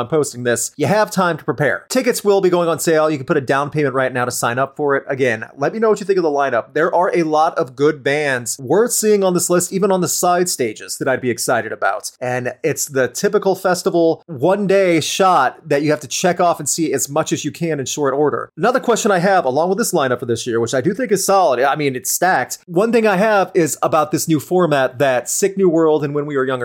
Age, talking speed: 30-49, 275 wpm